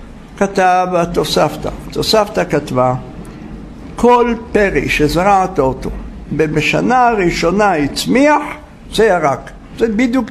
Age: 60-79